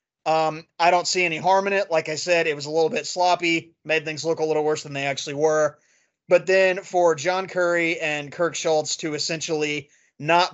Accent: American